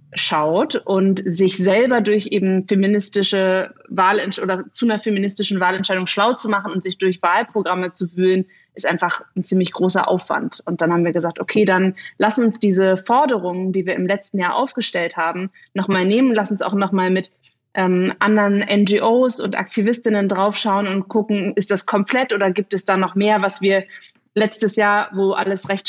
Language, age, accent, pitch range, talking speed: German, 30-49, German, 185-210 Hz, 180 wpm